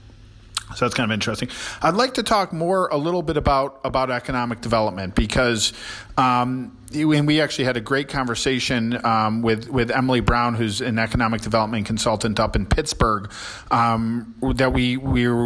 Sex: male